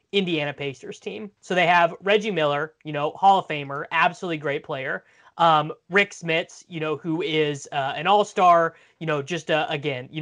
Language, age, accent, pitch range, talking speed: English, 20-39, American, 150-190 Hz, 195 wpm